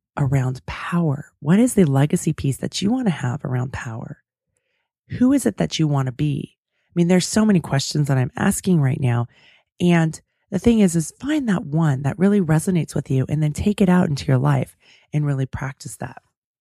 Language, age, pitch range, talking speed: English, 30-49, 130-165 Hz, 210 wpm